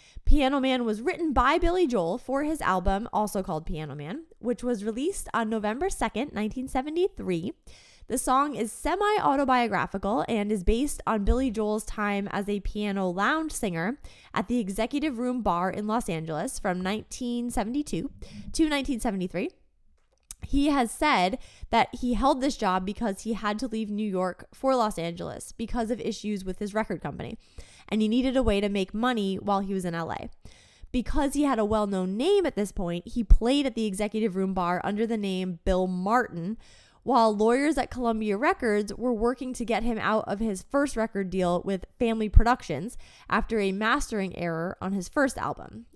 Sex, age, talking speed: female, 20-39, 175 wpm